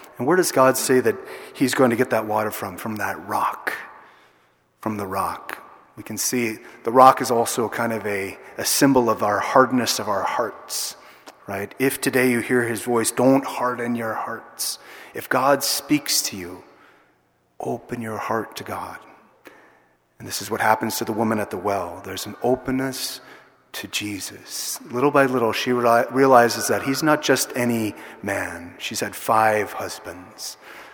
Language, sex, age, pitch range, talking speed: English, male, 30-49, 110-130 Hz, 175 wpm